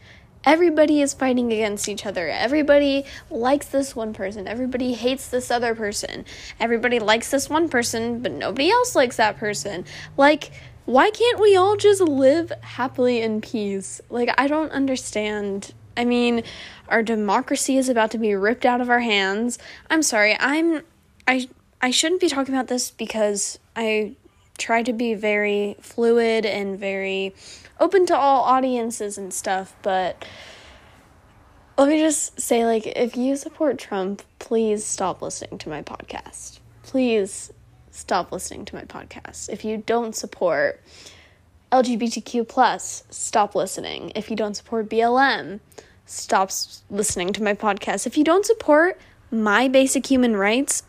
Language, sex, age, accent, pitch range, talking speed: English, female, 10-29, American, 210-275 Hz, 150 wpm